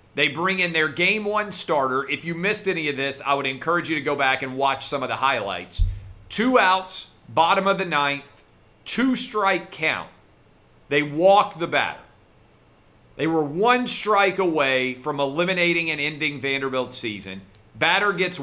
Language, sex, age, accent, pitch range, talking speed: English, male, 40-59, American, 145-190 Hz, 170 wpm